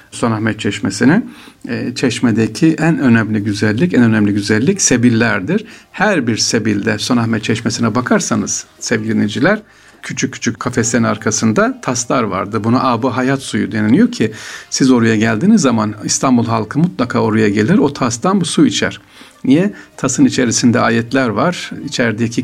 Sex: male